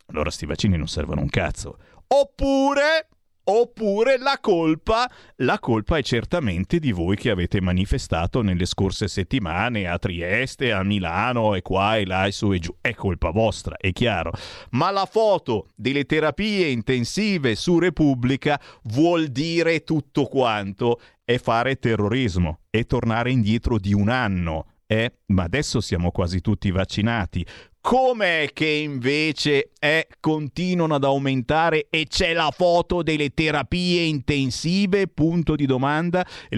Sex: male